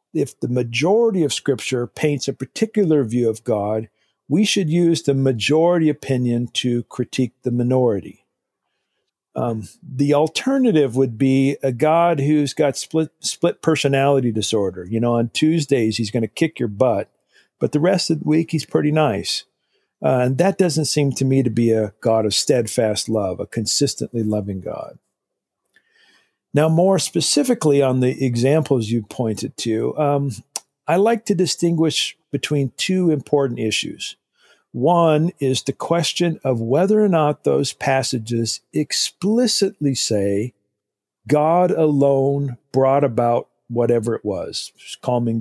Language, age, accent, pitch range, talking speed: English, 50-69, American, 120-155 Hz, 145 wpm